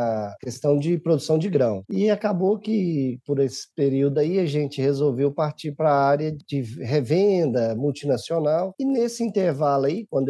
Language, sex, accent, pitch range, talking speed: Portuguese, male, Brazilian, 140-205 Hz, 155 wpm